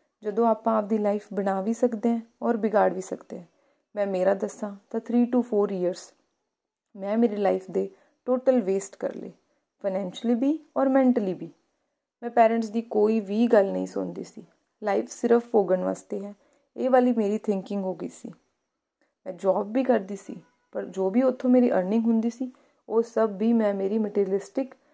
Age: 30-49